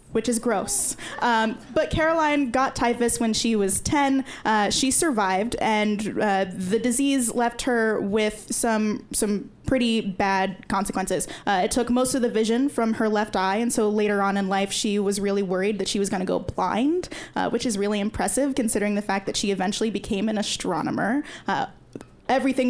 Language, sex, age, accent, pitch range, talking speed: English, female, 10-29, American, 205-255 Hz, 185 wpm